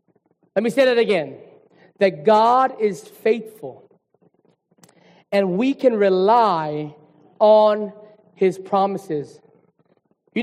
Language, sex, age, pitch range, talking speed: English, male, 30-49, 200-285 Hz, 100 wpm